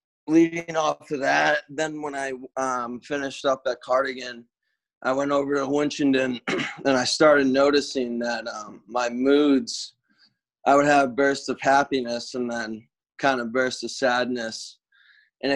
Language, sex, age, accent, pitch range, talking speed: English, male, 20-39, American, 120-135 Hz, 145 wpm